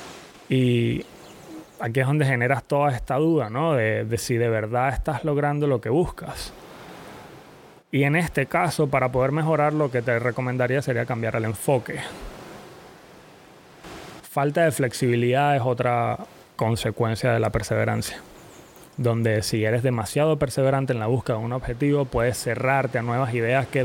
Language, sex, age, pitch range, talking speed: Spanish, male, 20-39, 115-140 Hz, 150 wpm